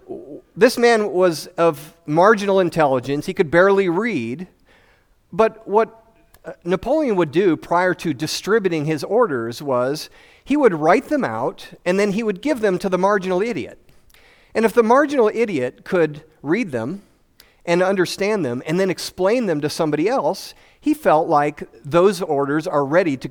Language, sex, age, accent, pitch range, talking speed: English, male, 40-59, American, 150-205 Hz, 160 wpm